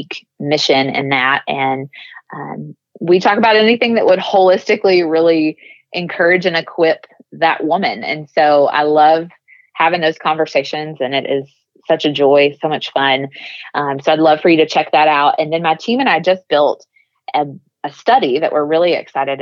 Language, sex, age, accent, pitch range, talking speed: English, female, 20-39, American, 140-165 Hz, 180 wpm